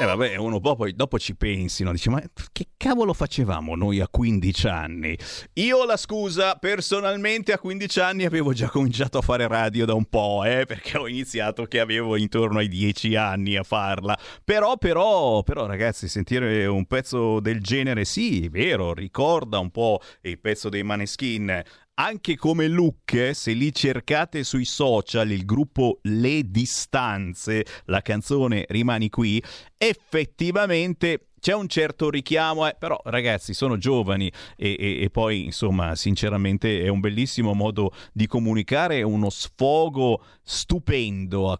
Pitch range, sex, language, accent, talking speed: 100-140 Hz, male, Italian, native, 160 wpm